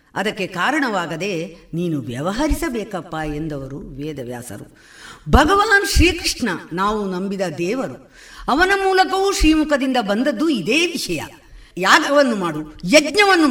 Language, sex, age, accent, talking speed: Kannada, female, 50-69, native, 90 wpm